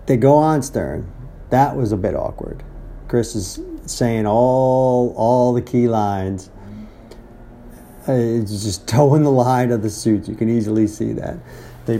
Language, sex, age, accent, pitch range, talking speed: English, male, 40-59, American, 105-130 Hz, 155 wpm